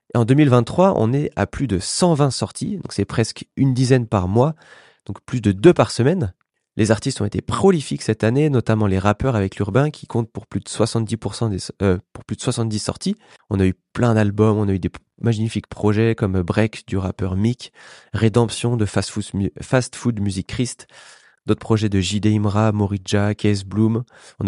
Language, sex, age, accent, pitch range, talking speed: French, male, 20-39, French, 100-125 Hz, 195 wpm